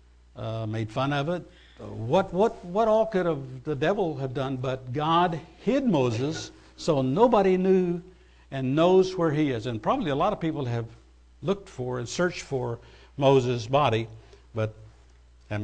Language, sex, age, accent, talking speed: English, male, 60-79, American, 165 wpm